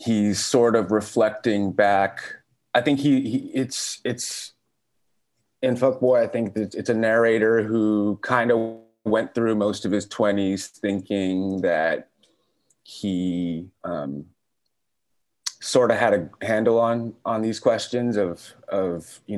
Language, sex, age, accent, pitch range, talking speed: English, male, 30-49, American, 95-115 Hz, 135 wpm